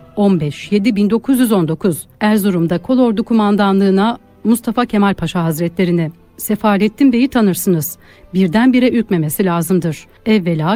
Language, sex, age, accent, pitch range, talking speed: Turkish, female, 60-79, native, 185-240 Hz, 95 wpm